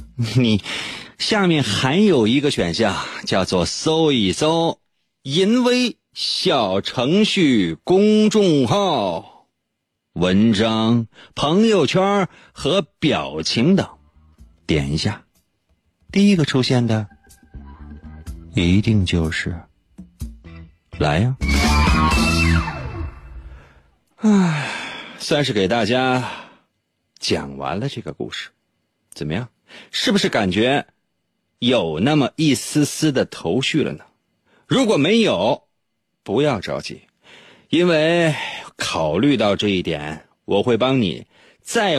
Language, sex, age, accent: Chinese, male, 30-49, native